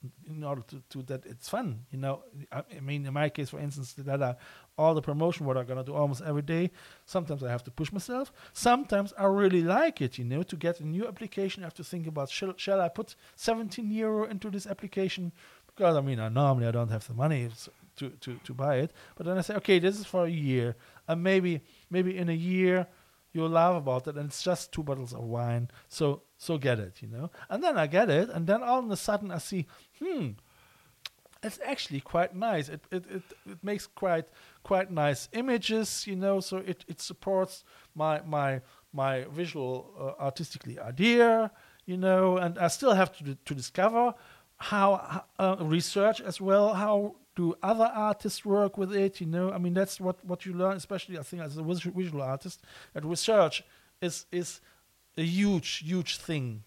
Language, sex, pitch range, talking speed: English, male, 145-195 Hz, 205 wpm